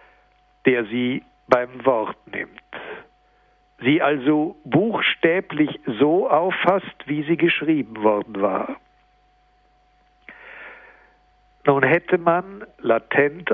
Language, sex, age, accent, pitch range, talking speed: German, male, 60-79, German, 135-165 Hz, 85 wpm